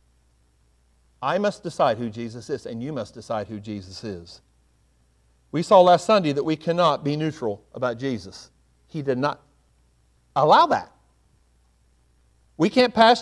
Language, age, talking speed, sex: English, 50-69, 145 wpm, male